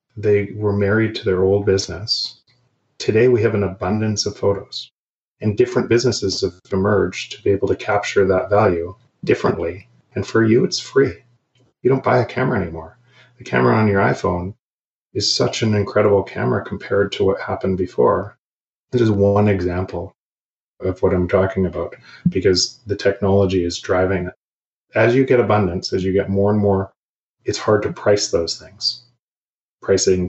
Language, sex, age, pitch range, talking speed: English, male, 30-49, 95-120 Hz, 165 wpm